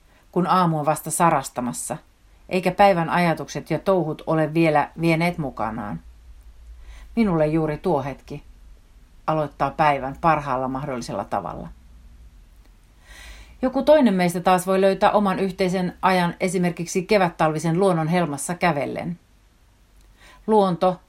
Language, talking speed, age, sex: Finnish, 110 wpm, 40-59, female